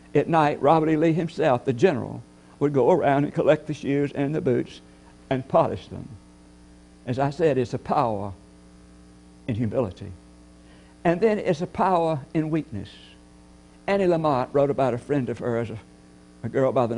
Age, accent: 60-79, American